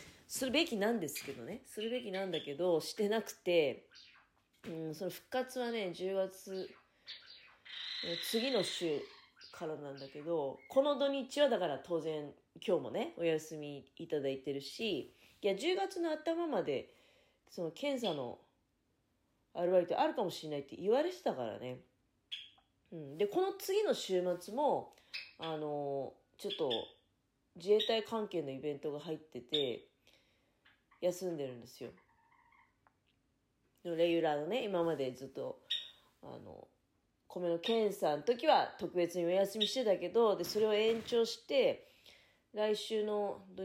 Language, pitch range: Japanese, 155-230 Hz